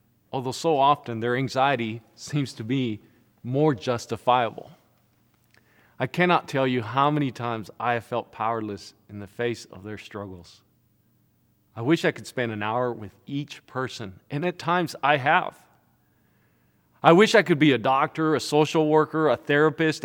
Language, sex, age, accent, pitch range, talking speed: English, male, 40-59, American, 110-145 Hz, 160 wpm